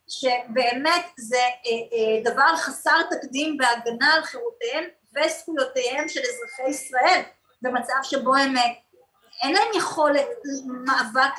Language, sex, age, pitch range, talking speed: Hebrew, female, 30-49, 250-315 Hz, 100 wpm